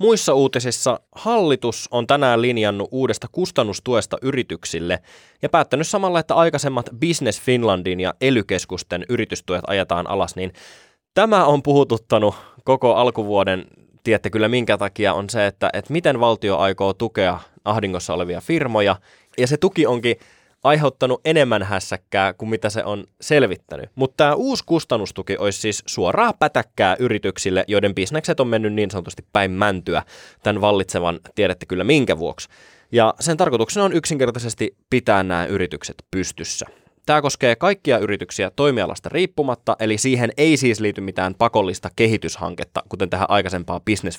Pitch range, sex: 100-155 Hz, male